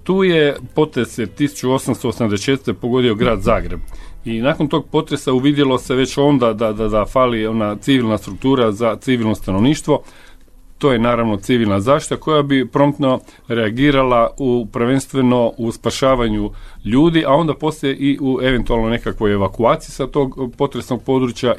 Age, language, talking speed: 40-59, Croatian, 140 wpm